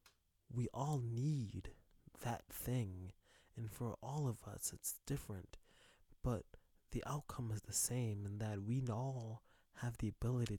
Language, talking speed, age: English, 140 wpm, 20-39